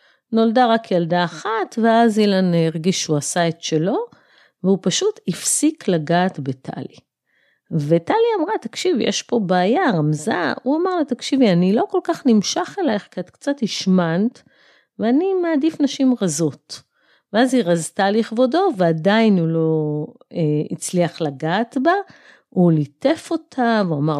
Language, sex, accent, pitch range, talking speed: Hebrew, female, native, 160-235 Hz, 140 wpm